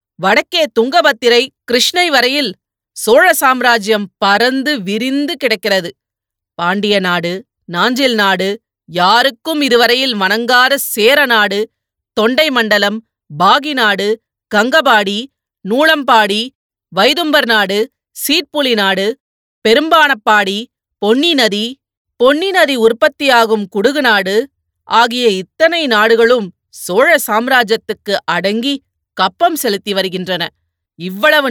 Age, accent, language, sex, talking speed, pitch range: 30-49, native, Tamil, female, 85 wpm, 195-255 Hz